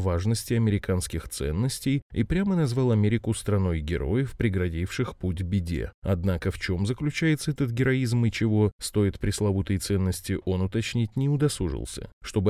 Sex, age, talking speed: male, 20-39, 135 wpm